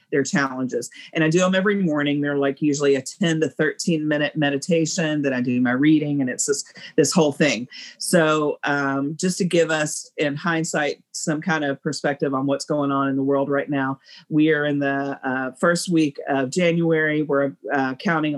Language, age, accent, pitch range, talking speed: English, 40-59, American, 140-160 Hz, 200 wpm